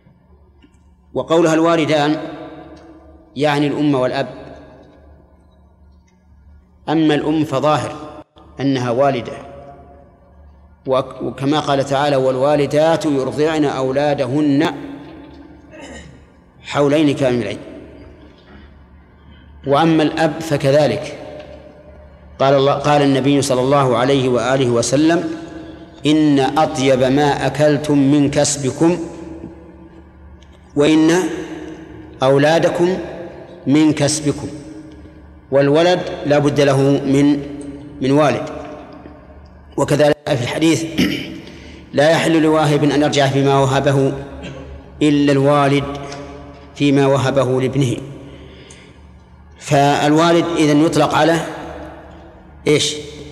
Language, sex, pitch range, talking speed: Arabic, male, 125-150 Hz, 75 wpm